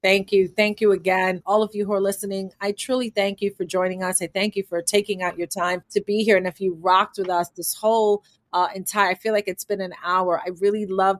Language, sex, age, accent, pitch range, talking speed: English, female, 30-49, American, 180-215 Hz, 265 wpm